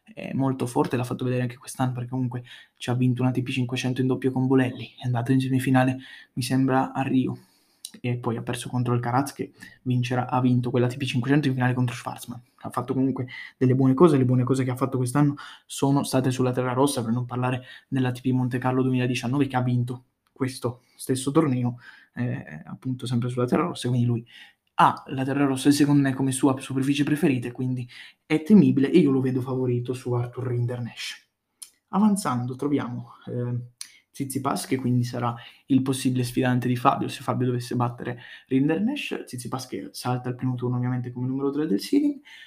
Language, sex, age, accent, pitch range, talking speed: Italian, male, 20-39, native, 125-135 Hz, 195 wpm